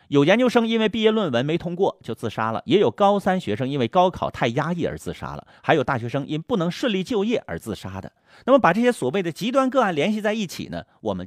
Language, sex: Chinese, male